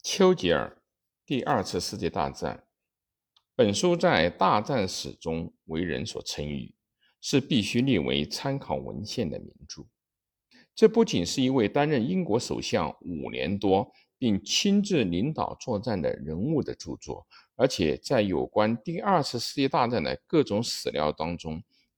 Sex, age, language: male, 50-69, Chinese